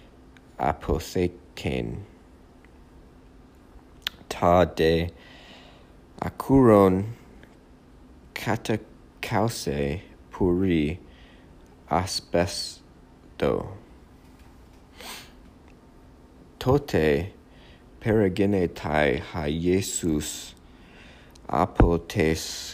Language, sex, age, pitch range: English, male, 50-69, 65-85 Hz